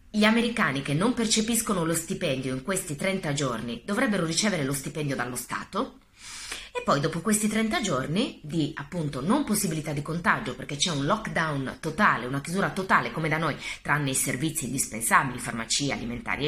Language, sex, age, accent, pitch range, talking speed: Italian, female, 20-39, native, 140-205 Hz, 170 wpm